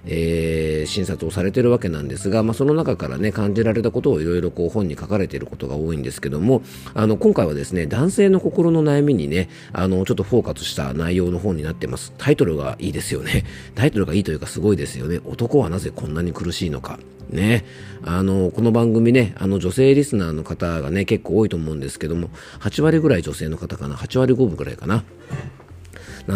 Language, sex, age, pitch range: Japanese, male, 40-59, 80-115 Hz